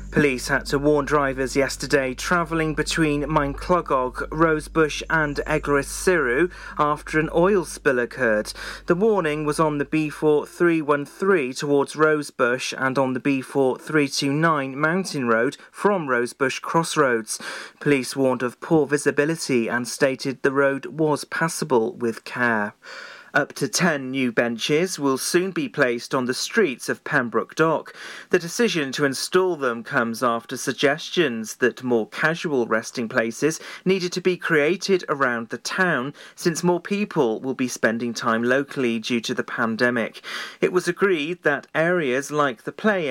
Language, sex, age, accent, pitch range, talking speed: English, male, 40-59, British, 130-165 Hz, 145 wpm